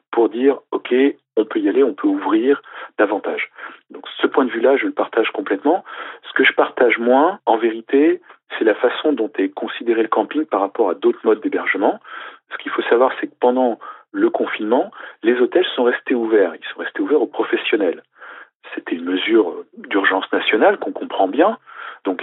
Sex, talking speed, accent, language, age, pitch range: male, 190 wpm, French, French, 40-59, 300-415 Hz